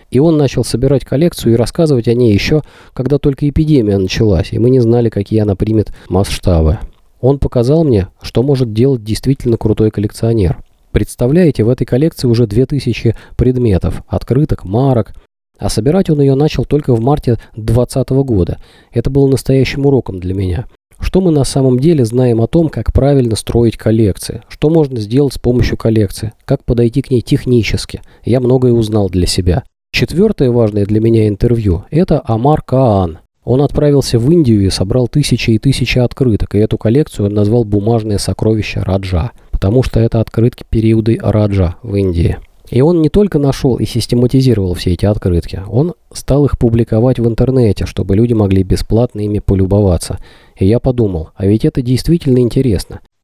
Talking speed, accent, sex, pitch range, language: 170 wpm, native, male, 100-130 Hz, Russian